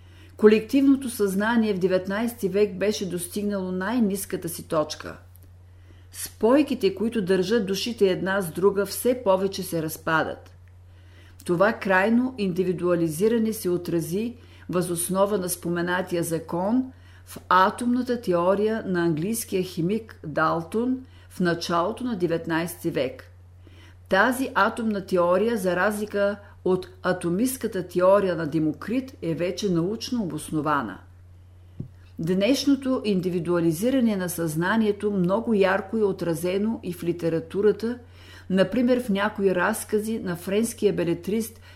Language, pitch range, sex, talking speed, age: Bulgarian, 160-210 Hz, female, 105 wpm, 50-69